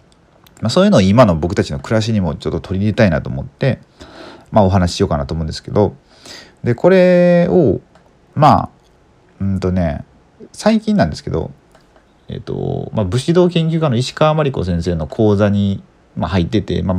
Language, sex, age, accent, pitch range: Japanese, male, 40-59, native, 85-145 Hz